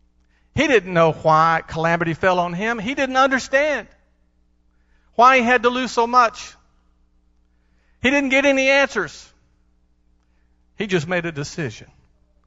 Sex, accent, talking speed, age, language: male, American, 135 wpm, 50-69, English